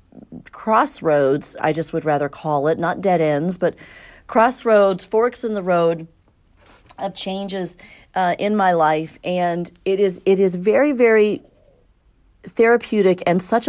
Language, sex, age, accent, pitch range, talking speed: English, female, 40-59, American, 150-190 Hz, 130 wpm